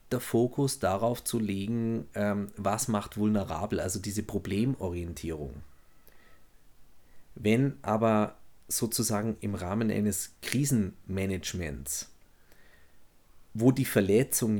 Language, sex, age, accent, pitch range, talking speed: German, male, 30-49, German, 100-120 Hz, 85 wpm